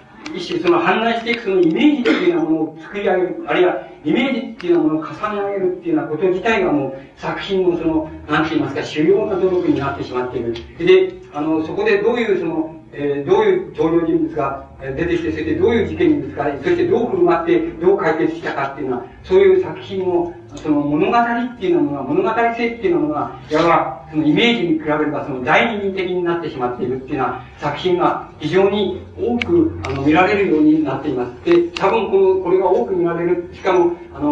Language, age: Japanese, 40-59